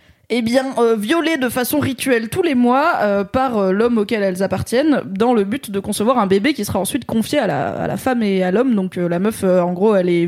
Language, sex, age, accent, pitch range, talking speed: French, female, 20-39, French, 195-245 Hz, 270 wpm